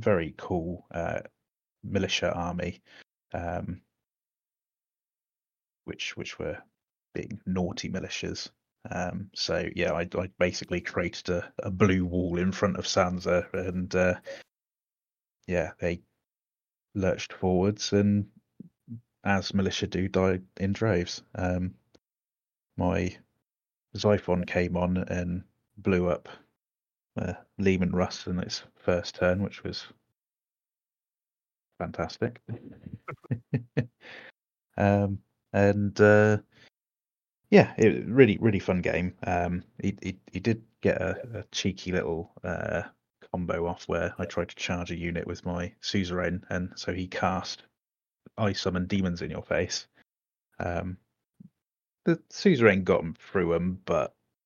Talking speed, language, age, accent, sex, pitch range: 120 wpm, English, 30-49, British, male, 90-105 Hz